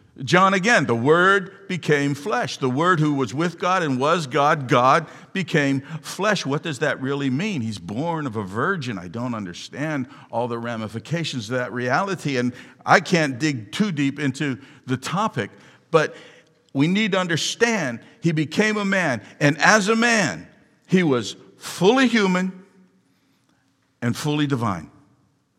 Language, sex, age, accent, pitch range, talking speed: English, male, 50-69, American, 130-170 Hz, 155 wpm